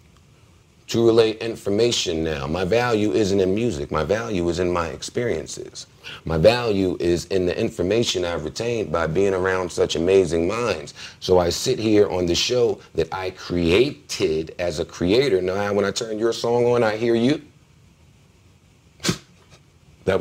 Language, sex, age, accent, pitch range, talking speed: English, male, 40-59, American, 110-155 Hz, 155 wpm